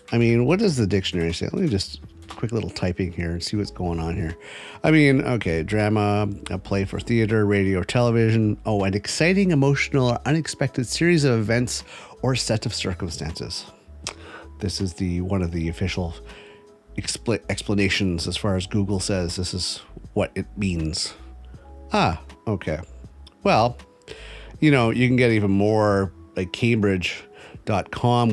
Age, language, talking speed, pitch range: 40-59, English, 160 wpm, 85-115 Hz